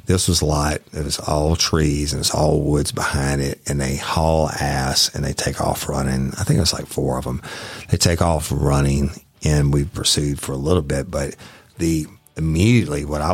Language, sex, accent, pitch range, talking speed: English, male, American, 70-85 Hz, 205 wpm